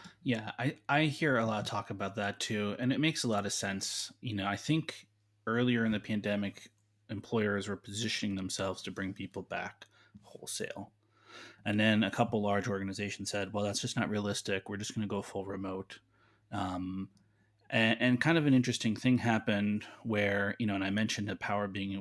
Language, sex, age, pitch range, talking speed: English, male, 30-49, 105-115 Hz, 195 wpm